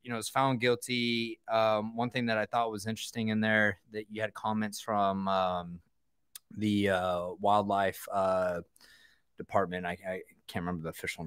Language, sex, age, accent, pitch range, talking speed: English, male, 20-39, American, 90-105 Hz, 175 wpm